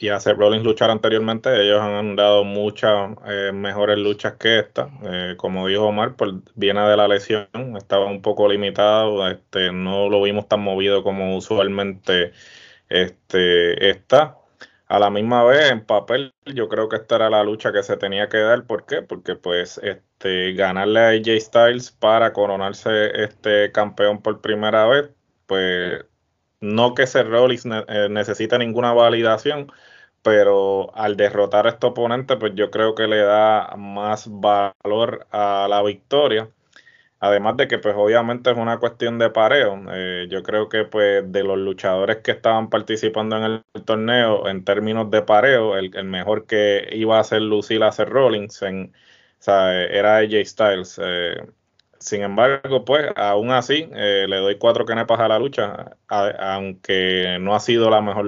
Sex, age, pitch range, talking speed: male, 20-39, 100-110 Hz, 170 wpm